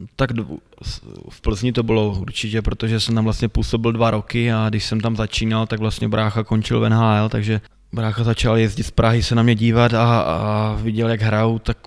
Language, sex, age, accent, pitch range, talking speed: Czech, male, 20-39, native, 105-115 Hz, 200 wpm